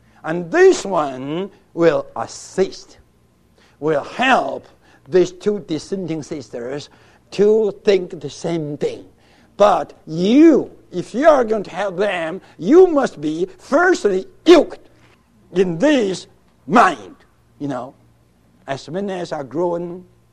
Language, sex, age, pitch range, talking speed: English, male, 60-79, 150-245 Hz, 120 wpm